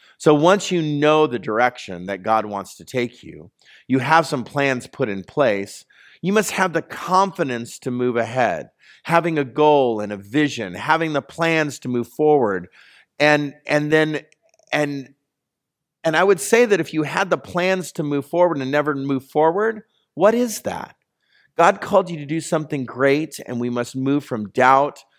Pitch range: 115-170 Hz